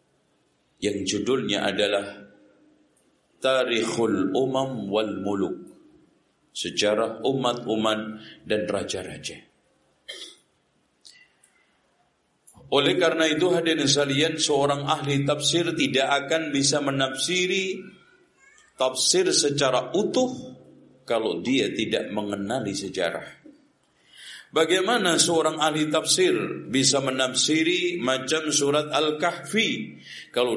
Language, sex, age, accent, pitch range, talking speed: Indonesian, male, 50-69, native, 115-155 Hz, 80 wpm